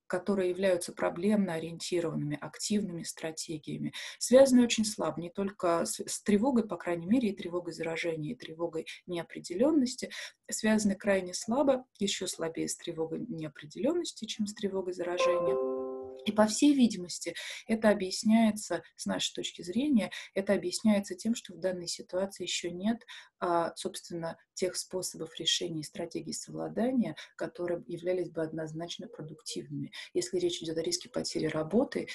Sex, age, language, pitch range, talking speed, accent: female, 20-39, Russian, 170-215 Hz, 135 wpm, native